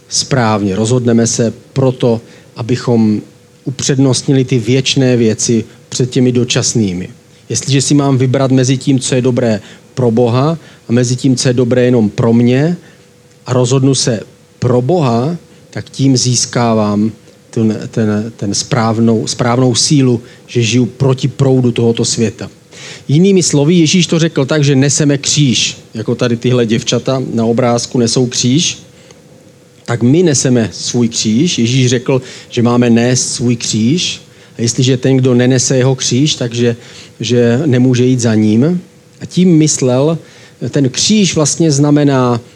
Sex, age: male, 40-59